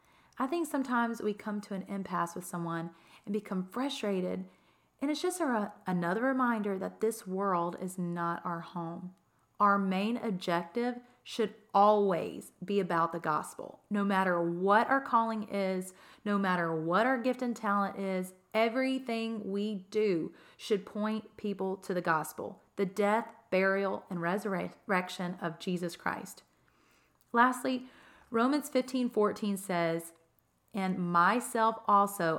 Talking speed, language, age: 135 wpm, English, 30-49